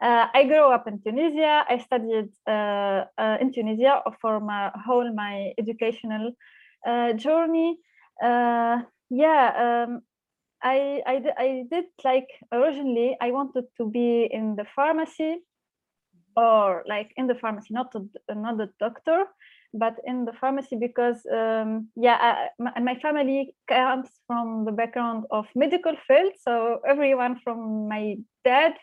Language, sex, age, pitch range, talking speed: English, female, 20-39, 225-290 Hz, 135 wpm